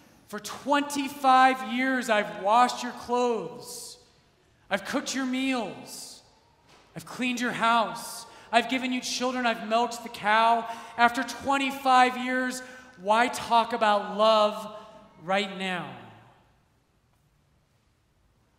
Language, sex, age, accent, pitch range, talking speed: English, male, 30-49, American, 215-250 Hz, 105 wpm